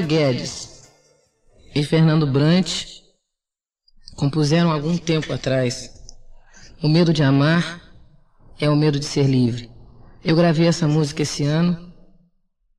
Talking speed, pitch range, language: 115 wpm, 130-170 Hz, Portuguese